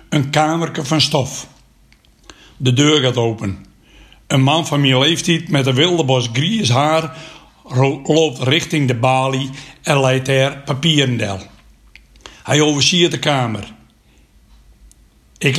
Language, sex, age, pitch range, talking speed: Dutch, male, 60-79, 125-155 Hz, 125 wpm